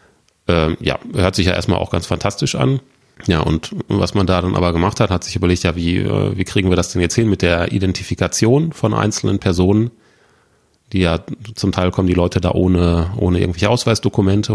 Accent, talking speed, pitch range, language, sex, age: German, 200 wpm, 85-105 Hz, German, male, 30-49